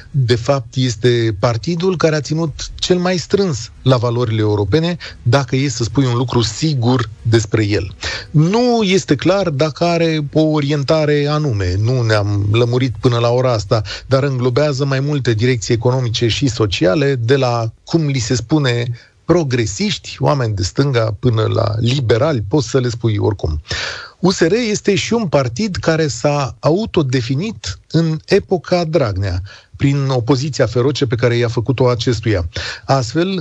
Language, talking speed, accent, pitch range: Romanian, 150 wpm, native, 115-150 Hz